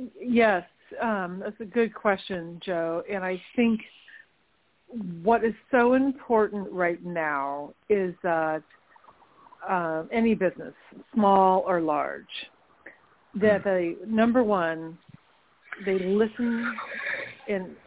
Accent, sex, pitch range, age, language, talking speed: American, female, 185-225 Hz, 50-69, English, 105 wpm